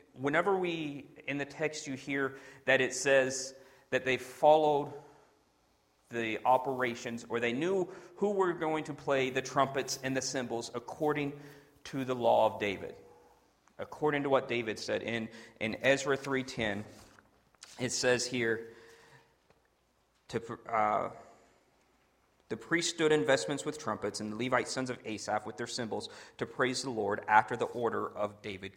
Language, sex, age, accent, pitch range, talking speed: English, male, 40-59, American, 125-160 Hz, 150 wpm